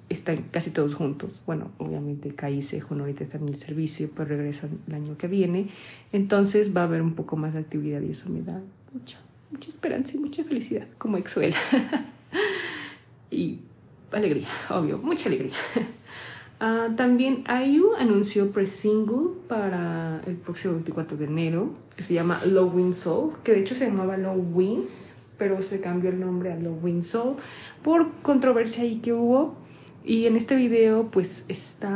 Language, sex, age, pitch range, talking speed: Spanish, female, 30-49, 170-230 Hz, 165 wpm